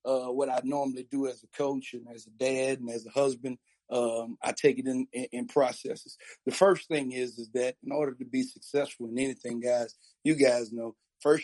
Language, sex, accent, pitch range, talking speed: English, male, American, 120-140 Hz, 215 wpm